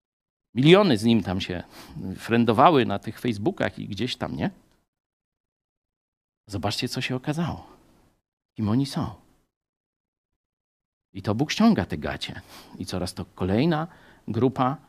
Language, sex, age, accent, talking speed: Polish, male, 50-69, native, 125 wpm